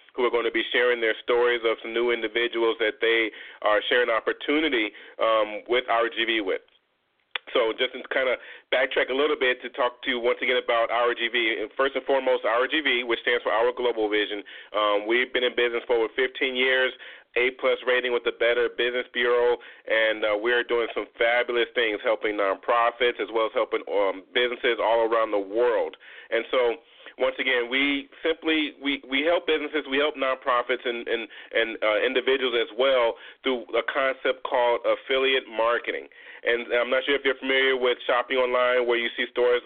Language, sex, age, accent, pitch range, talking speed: English, male, 30-49, American, 120-155 Hz, 185 wpm